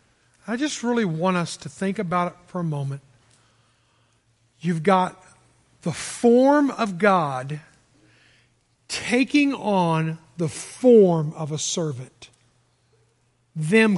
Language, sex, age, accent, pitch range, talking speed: English, male, 50-69, American, 120-180 Hz, 110 wpm